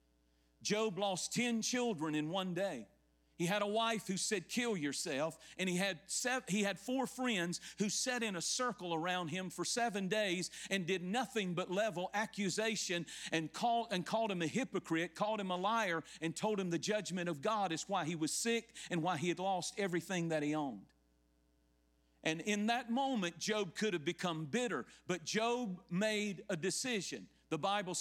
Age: 50-69